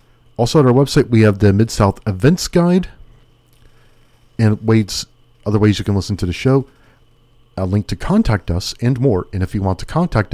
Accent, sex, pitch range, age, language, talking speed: American, male, 100-125 Hz, 40-59, English, 195 wpm